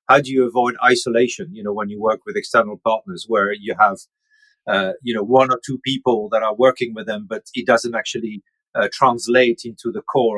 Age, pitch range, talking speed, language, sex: 40-59, 110-140 Hz, 215 wpm, English, male